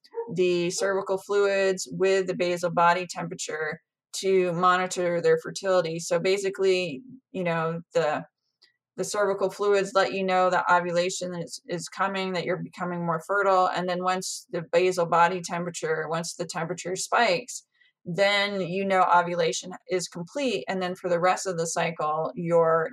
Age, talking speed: 20-39, 155 wpm